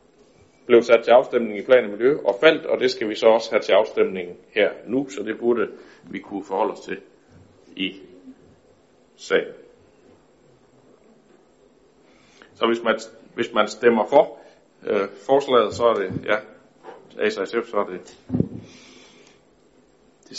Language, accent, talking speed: Danish, native, 140 wpm